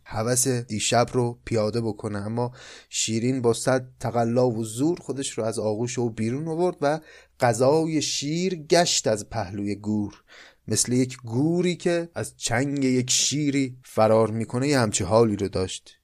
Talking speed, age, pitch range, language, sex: 155 wpm, 30-49, 115-155 Hz, Persian, male